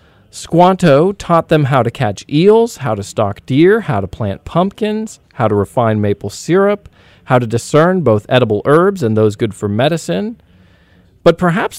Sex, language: male, English